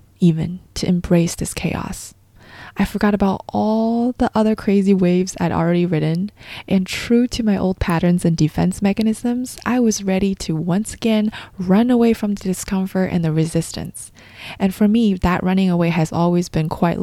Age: 20-39